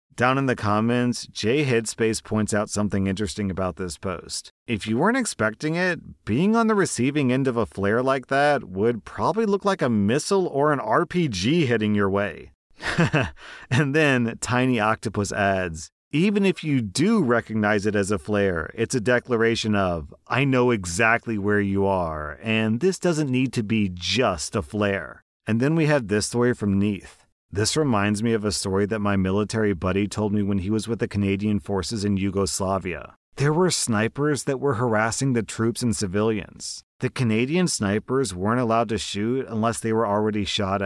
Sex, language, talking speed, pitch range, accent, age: male, English, 180 wpm, 100-125 Hz, American, 40-59